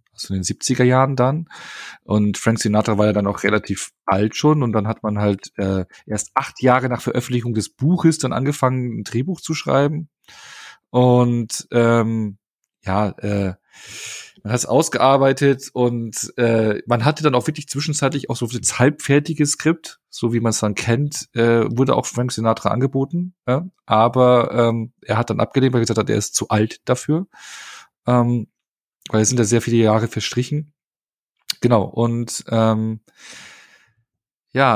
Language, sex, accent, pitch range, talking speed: German, male, German, 110-135 Hz, 165 wpm